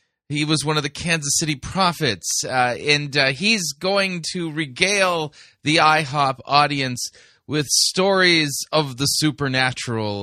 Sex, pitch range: male, 115-160 Hz